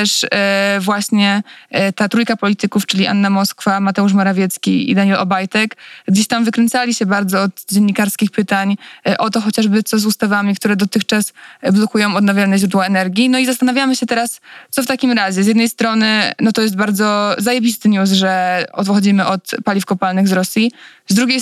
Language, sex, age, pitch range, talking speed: Polish, female, 20-39, 195-220 Hz, 170 wpm